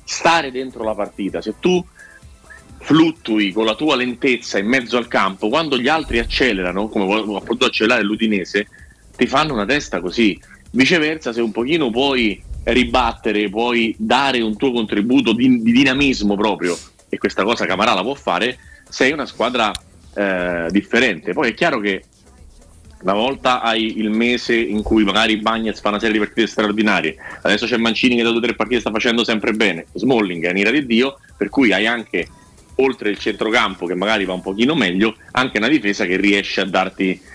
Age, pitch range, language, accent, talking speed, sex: 30-49, 100-125 Hz, Italian, native, 180 wpm, male